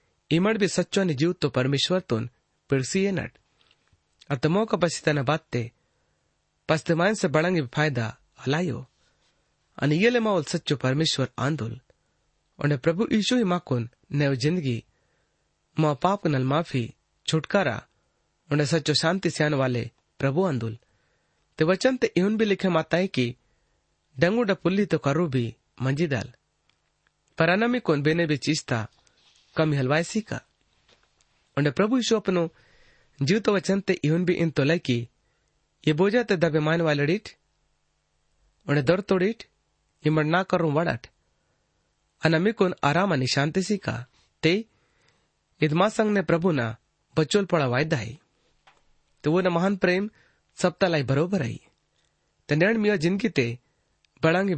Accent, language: native, Hindi